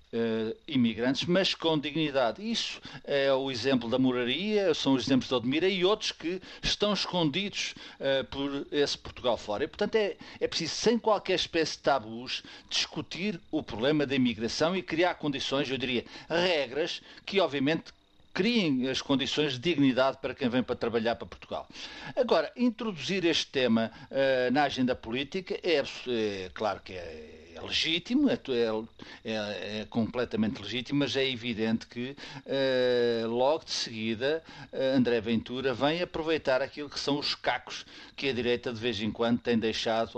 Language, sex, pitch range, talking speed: Portuguese, male, 120-160 Hz, 165 wpm